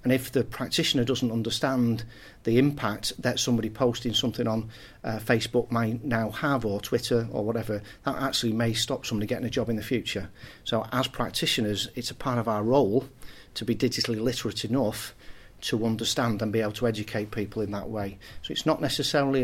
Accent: British